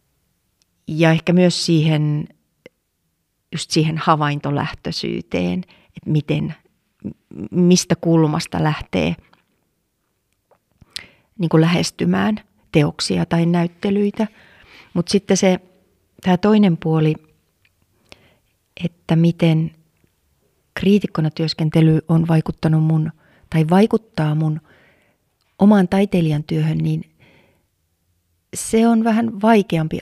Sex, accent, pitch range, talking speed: female, native, 155-180 Hz, 80 wpm